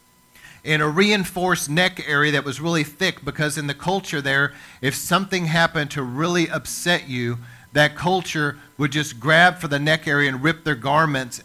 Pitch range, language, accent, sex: 130-165 Hz, English, American, male